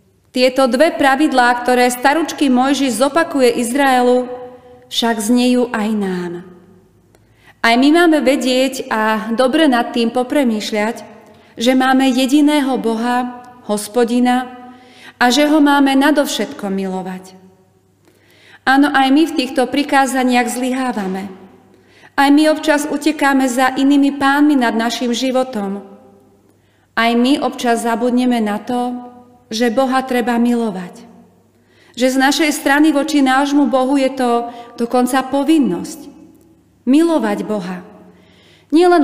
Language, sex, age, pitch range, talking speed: Slovak, female, 30-49, 230-280 Hz, 110 wpm